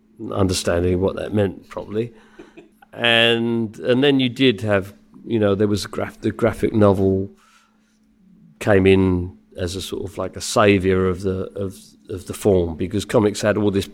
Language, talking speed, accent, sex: English, 170 wpm, British, male